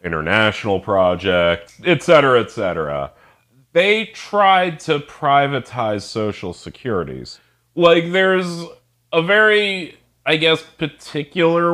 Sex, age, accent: male, 30-49, American